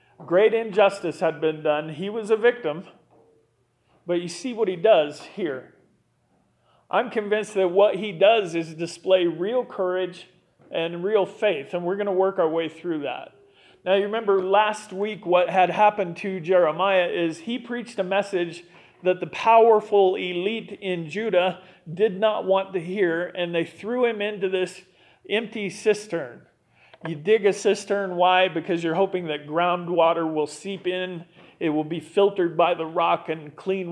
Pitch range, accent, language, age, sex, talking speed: 165-200 Hz, American, English, 40-59, male, 165 wpm